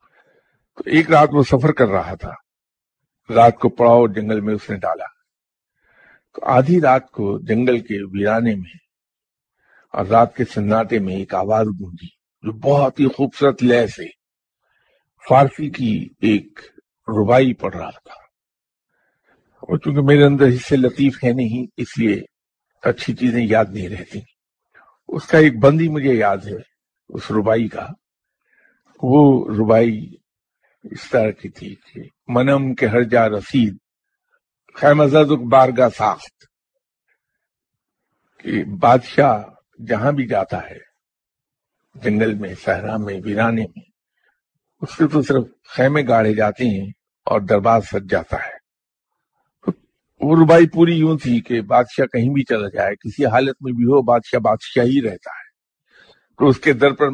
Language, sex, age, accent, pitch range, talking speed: English, male, 50-69, Indian, 110-140 Hz, 130 wpm